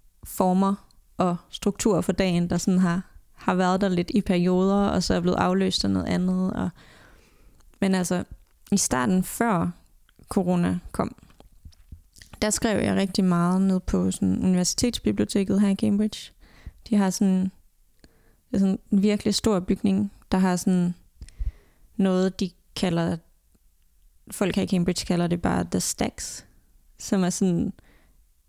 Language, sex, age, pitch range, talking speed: Danish, female, 20-39, 165-195 Hz, 145 wpm